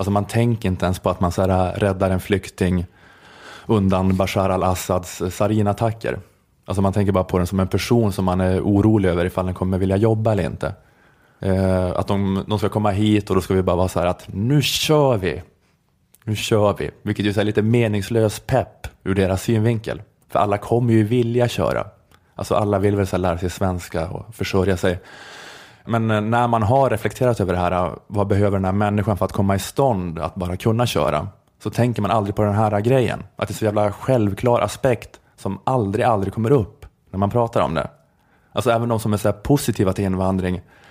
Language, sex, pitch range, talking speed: Swedish, male, 95-115 Hz, 210 wpm